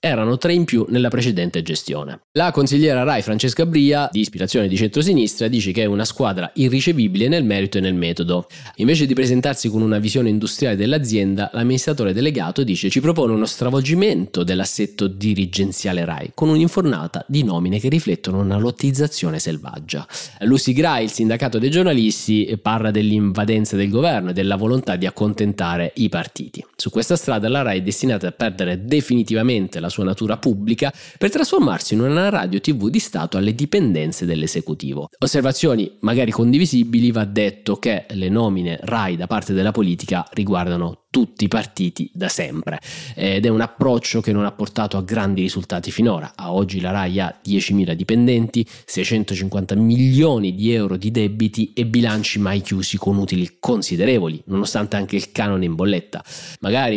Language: Italian